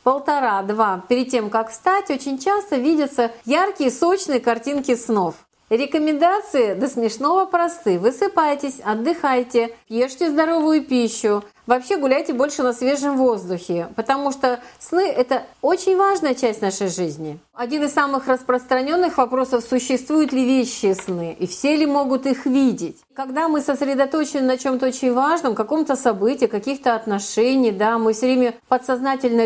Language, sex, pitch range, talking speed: Russian, female, 230-295 Hz, 140 wpm